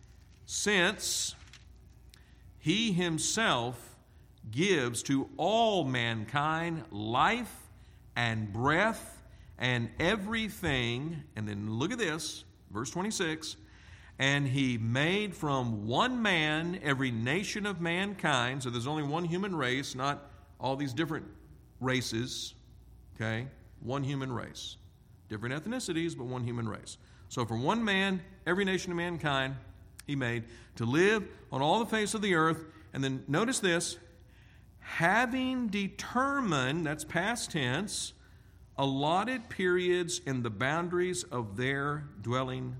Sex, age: male, 50-69